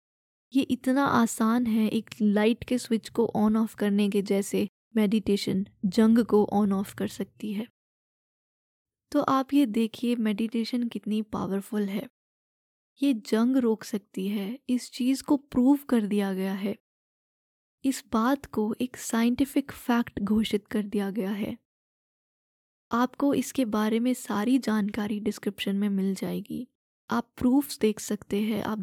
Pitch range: 210-245 Hz